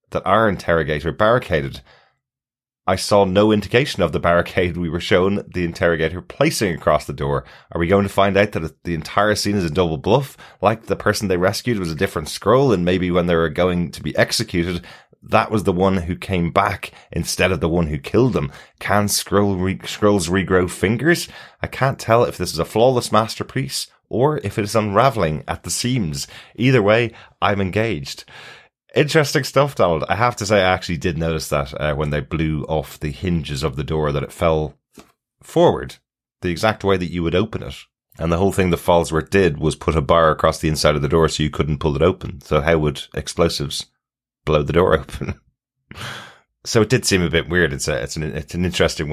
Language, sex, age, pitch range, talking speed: English, male, 30-49, 80-100 Hz, 205 wpm